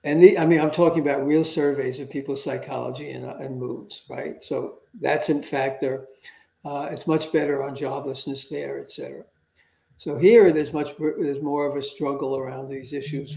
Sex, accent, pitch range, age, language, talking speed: male, American, 140-155 Hz, 60-79, English, 185 wpm